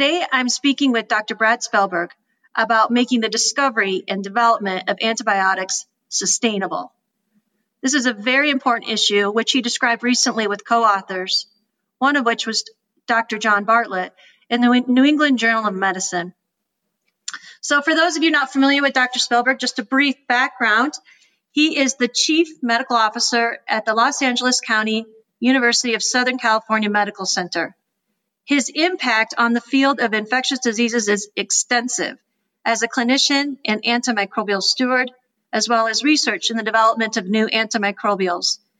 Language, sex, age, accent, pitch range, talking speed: English, female, 40-59, American, 215-255 Hz, 155 wpm